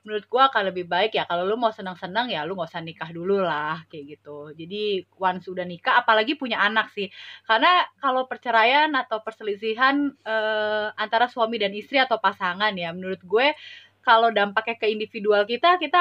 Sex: female